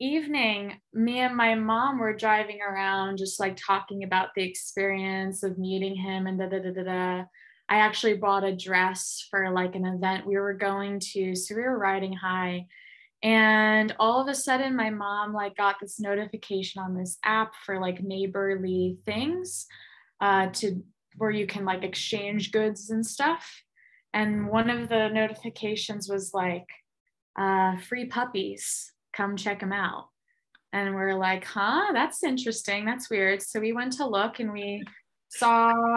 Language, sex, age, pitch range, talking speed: English, female, 20-39, 190-220 Hz, 165 wpm